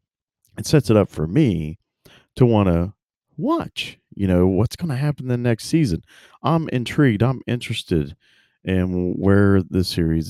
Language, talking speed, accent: English, 155 wpm, American